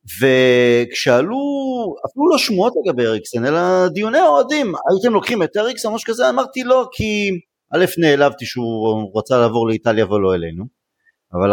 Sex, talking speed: male, 150 wpm